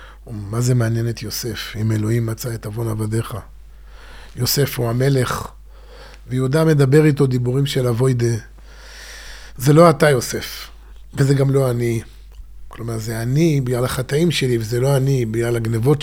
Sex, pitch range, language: male, 115-150 Hz, Hebrew